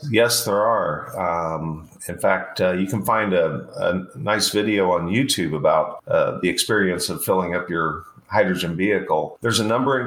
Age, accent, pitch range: 40-59, American, 90-110 Hz